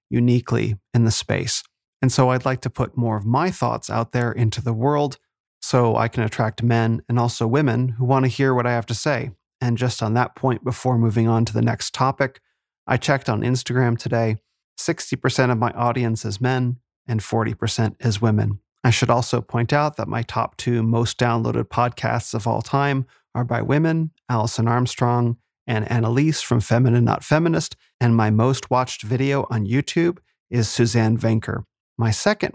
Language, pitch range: English, 115-130 Hz